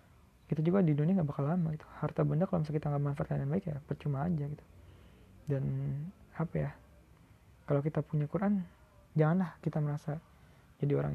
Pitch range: 140-170 Hz